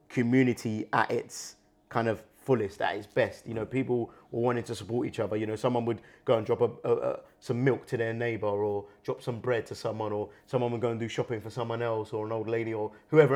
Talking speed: 235 wpm